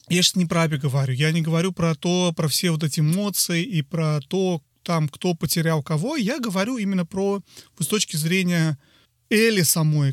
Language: Russian